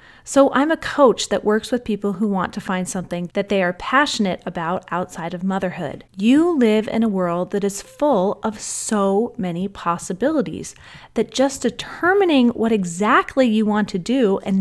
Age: 30-49